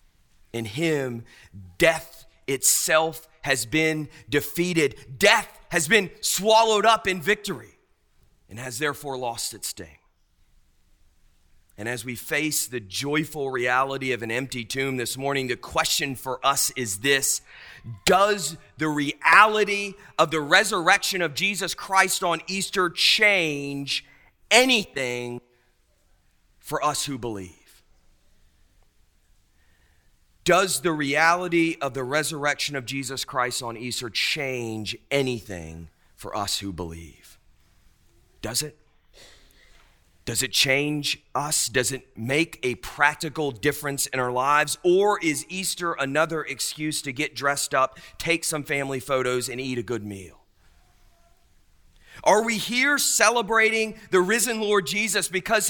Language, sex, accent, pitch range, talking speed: English, male, American, 115-170 Hz, 125 wpm